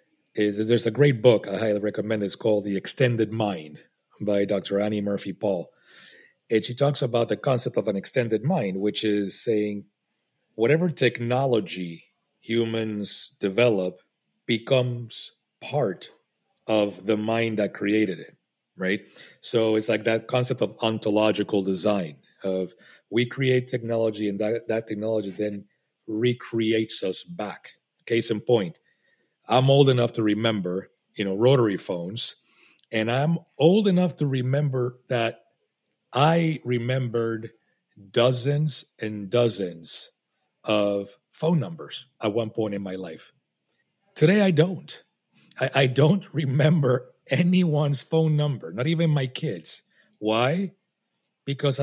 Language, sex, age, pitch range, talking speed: English, male, 40-59, 105-140 Hz, 130 wpm